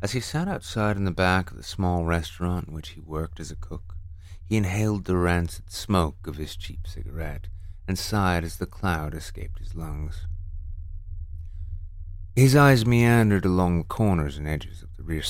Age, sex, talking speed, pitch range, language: 30-49, male, 180 wpm, 80-95 Hz, English